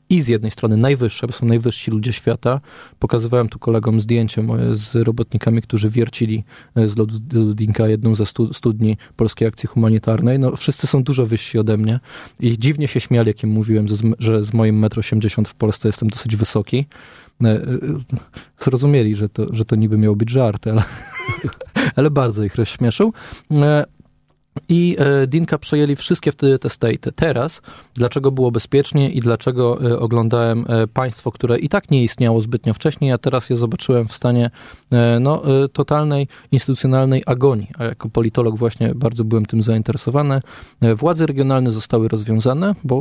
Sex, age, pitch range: male, 20-39, 115-130 Hz